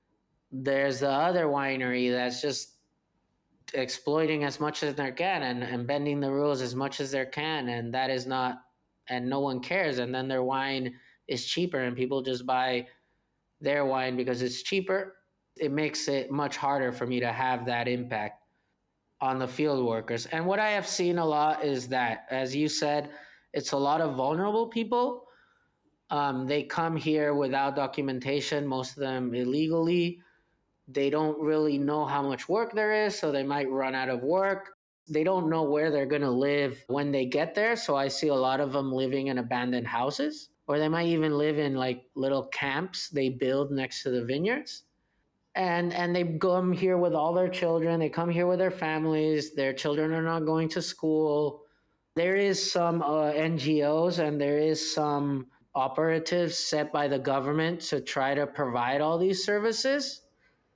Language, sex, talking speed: English, male, 185 wpm